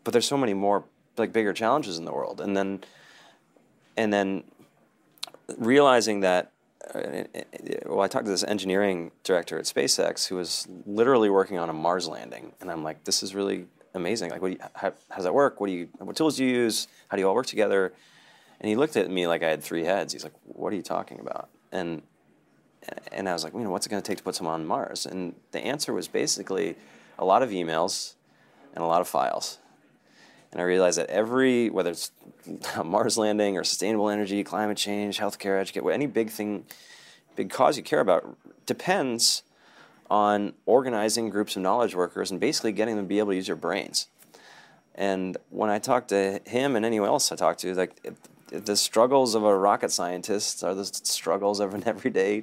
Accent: American